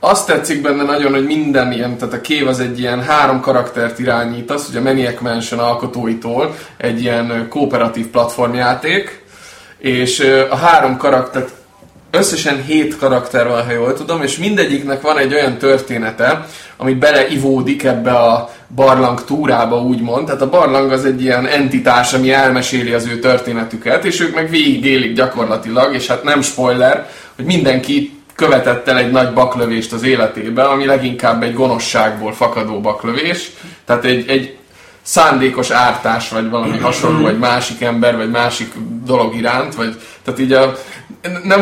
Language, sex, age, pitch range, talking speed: Hungarian, male, 20-39, 120-135 Hz, 150 wpm